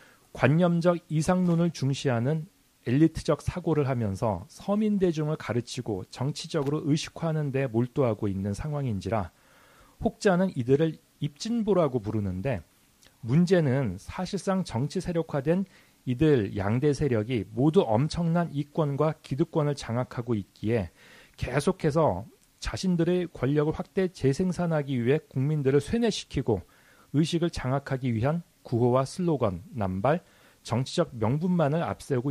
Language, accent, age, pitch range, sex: Korean, native, 40-59, 120-170 Hz, male